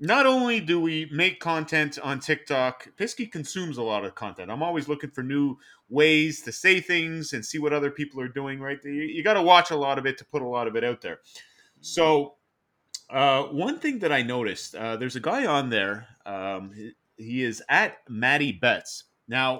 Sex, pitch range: male, 125-165 Hz